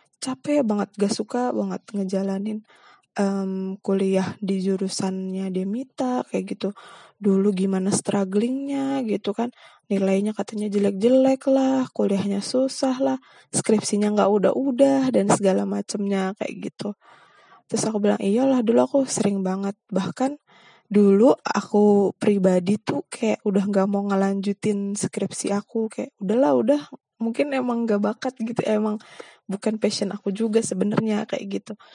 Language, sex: Indonesian, female